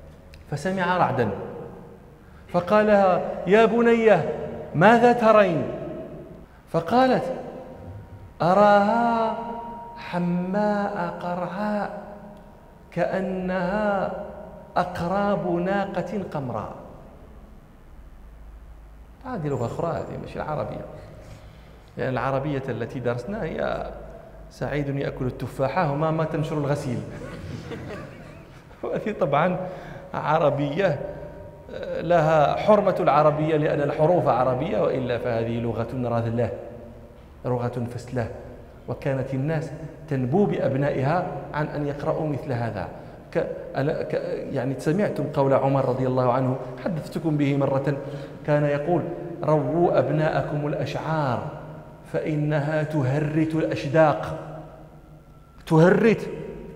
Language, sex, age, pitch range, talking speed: Arabic, male, 40-59, 130-185 Hz, 80 wpm